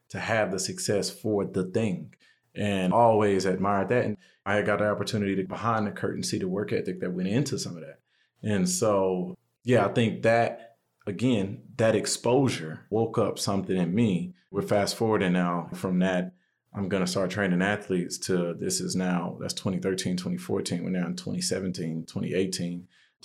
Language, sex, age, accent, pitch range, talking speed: English, male, 30-49, American, 90-110 Hz, 175 wpm